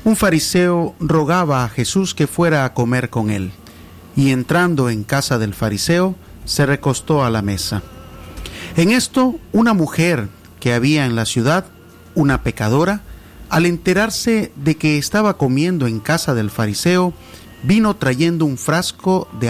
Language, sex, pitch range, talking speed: Spanish, male, 110-170 Hz, 150 wpm